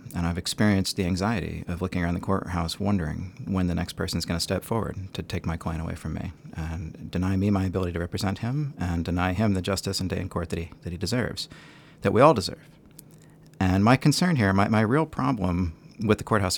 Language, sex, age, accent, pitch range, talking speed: English, male, 40-59, American, 90-110 Hz, 230 wpm